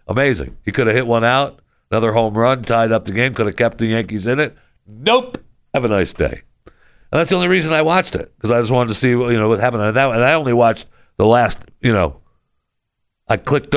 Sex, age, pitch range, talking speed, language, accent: male, 60-79, 80-120 Hz, 250 wpm, English, American